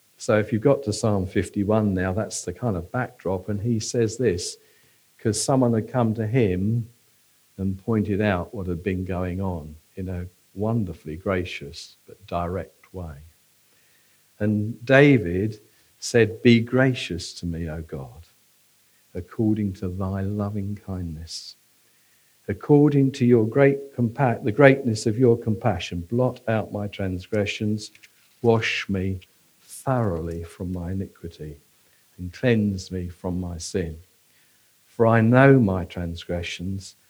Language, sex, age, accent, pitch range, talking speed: English, male, 50-69, British, 95-125 Hz, 135 wpm